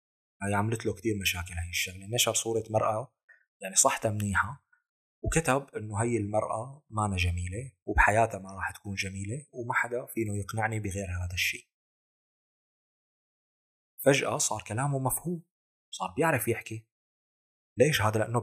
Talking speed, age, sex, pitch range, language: 140 wpm, 30-49, male, 90-115 Hz, Arabic